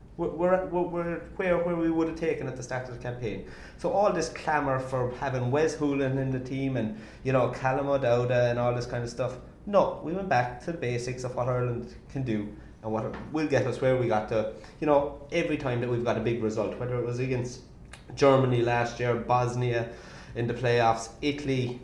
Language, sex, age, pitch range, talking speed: English, male, 30-49, 120-145 Hz, 215 wpm